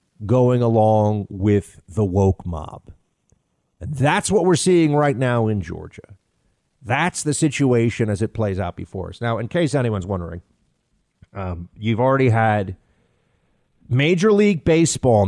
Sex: male